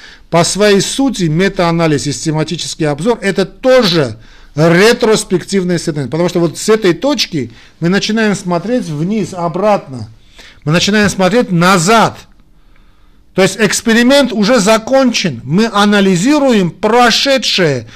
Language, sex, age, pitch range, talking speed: Russian, male, 50-69, 145-220 Hz, 115 wpm